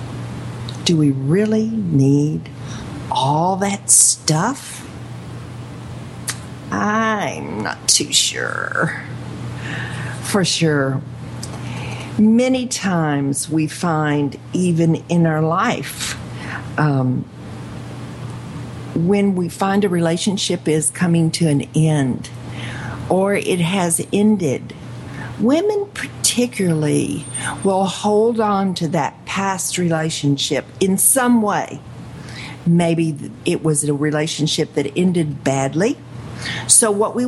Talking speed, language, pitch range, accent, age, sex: 95 wpm, English, 140-185 Hz, American, 50-69, female